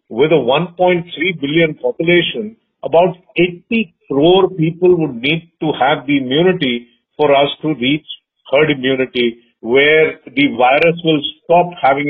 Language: English